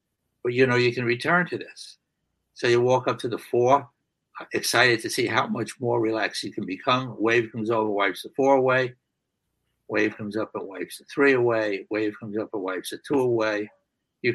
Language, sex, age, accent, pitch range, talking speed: English, male, 60-79, American, 110-130 Hz, 205 wpm